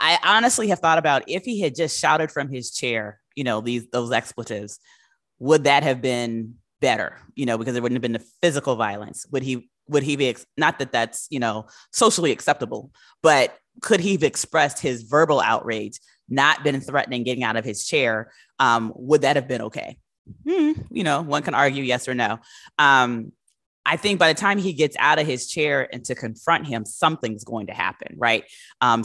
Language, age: English, 20-39